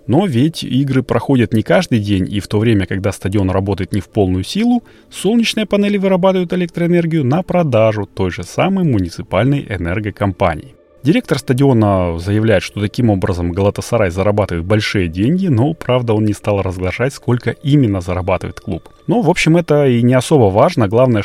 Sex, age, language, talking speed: male, 30-49, Russian, 165 wpm